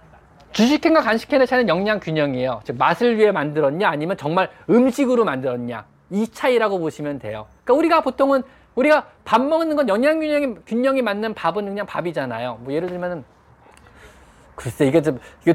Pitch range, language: 160-250 Hz, Korean